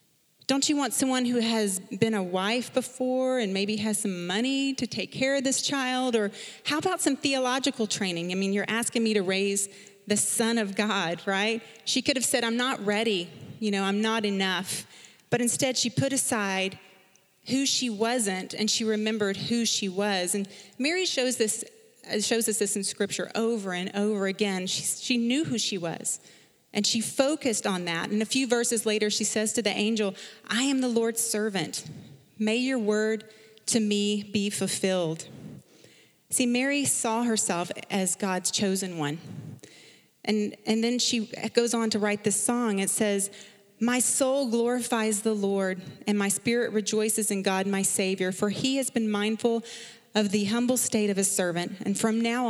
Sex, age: female, 30-49